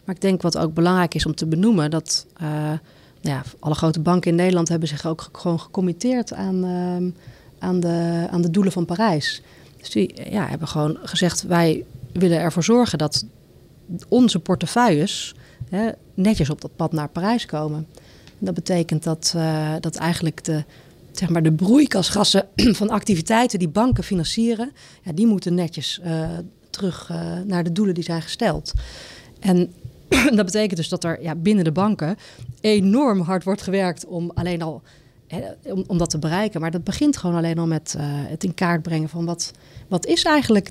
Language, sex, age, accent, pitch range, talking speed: Dutch, female, 30-49, Dutch, 160-195 Hz, 185 wpm